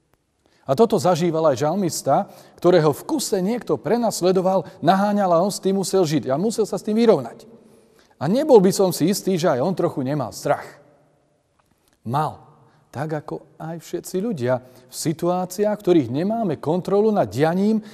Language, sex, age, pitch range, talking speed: Slovak, male, 40-59, 135-190 Hz, 165 wpm